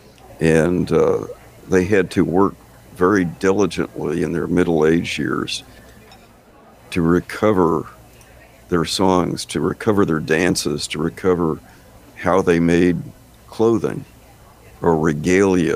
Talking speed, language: 110 wpm, English